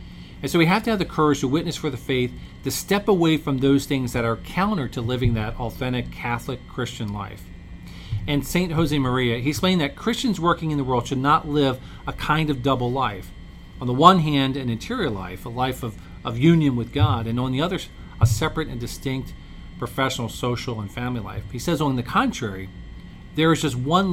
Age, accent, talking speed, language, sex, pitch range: 40-59, American, 210 wpm, English, male, 115-155 Hz